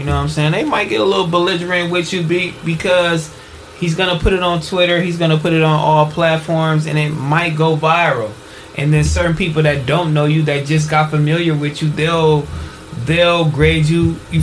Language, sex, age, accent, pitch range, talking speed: English, male, 20-39, American, 150-170 Hz, 225 wpm